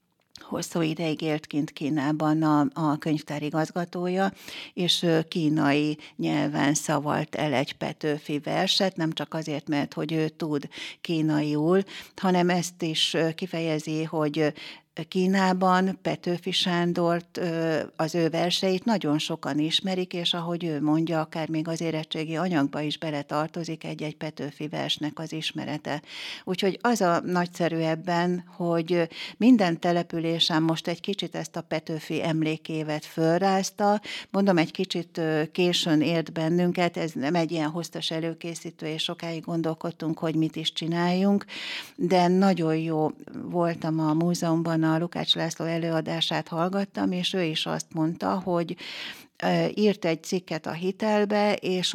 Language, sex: Hungarian, female